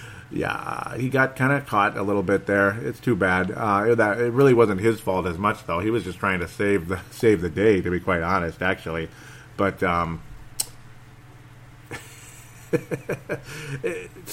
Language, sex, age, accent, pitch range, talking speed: English, male, 40-59, American, 95-120 Hz, 170 wpm